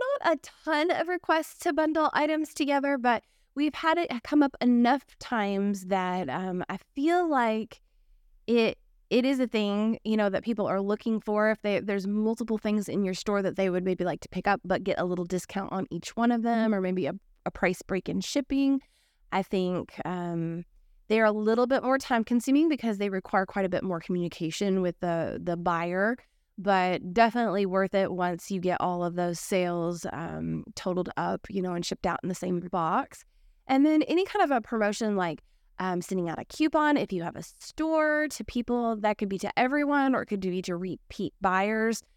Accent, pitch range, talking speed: American, 185-250 Hz, 210 wpm